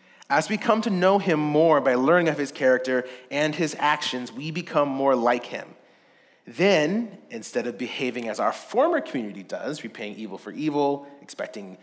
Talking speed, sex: 170 wpm, male